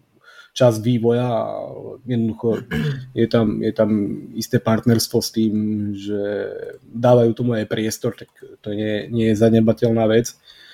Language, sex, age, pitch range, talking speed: Slovak, male, 20-39, 110-125 Hz, 135 wpm